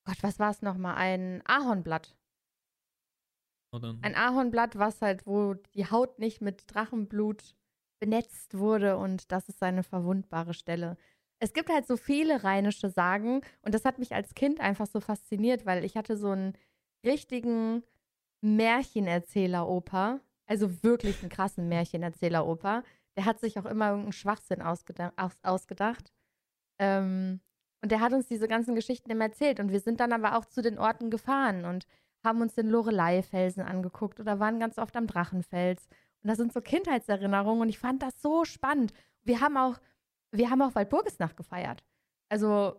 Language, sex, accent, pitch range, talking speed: German, female, German, 195-240 Hz, 160 wpm